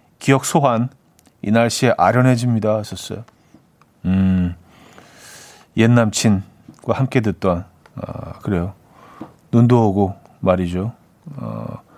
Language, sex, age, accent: Korean, male, 40-59, native